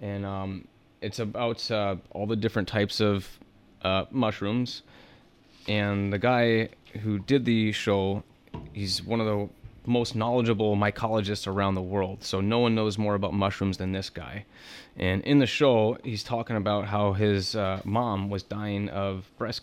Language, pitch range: English, 100-110 Hz